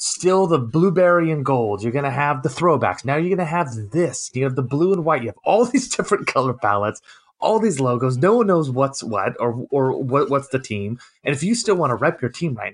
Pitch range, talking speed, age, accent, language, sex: 115-160 Hz, 245 wpm, 30-49, American, English, male